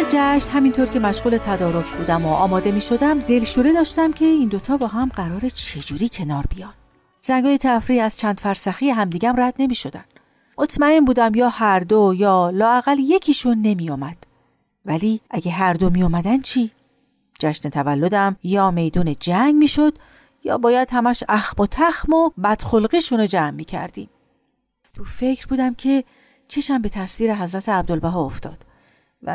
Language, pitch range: Persian, 180-255 Hz